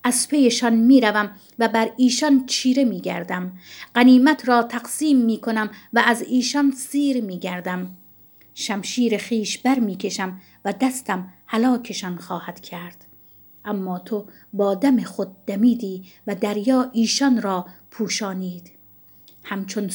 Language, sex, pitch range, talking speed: Persian, female, 195-240 Hz, 130 wpm